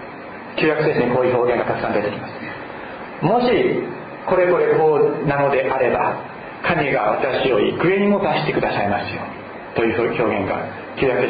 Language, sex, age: Japanese, male, 40-59